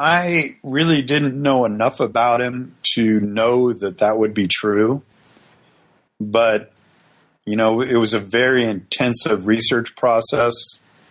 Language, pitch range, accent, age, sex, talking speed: English, 105-120 Hz, American, 40-59, male, 130 wpm